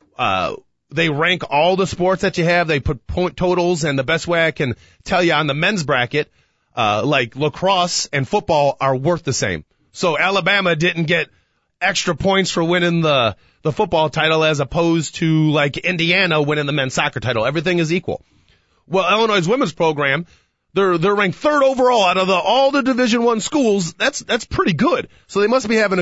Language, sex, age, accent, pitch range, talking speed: English, male, 30-49, American, 130-180 Hz, 195 wpm